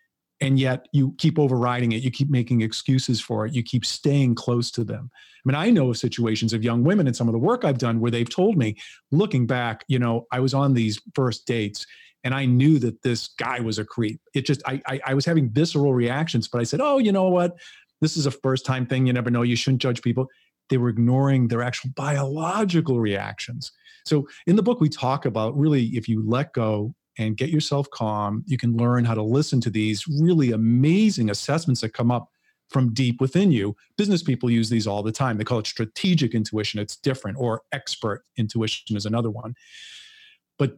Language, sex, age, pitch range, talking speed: English, male, 40-59, 115-145 Hz, 220 wpm